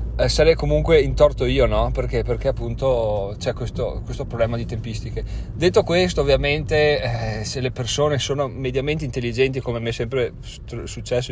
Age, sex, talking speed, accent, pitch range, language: 30-49, male, 155 wpm, native, 115-140 Hz, Italian